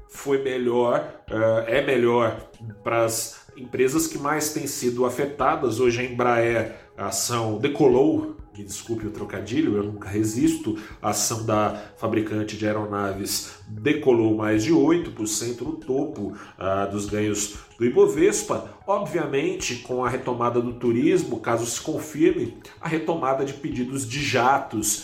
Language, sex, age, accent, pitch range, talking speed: Portuguese, male, 40-59, Brazilian, 110-155 Hz, 135 wpm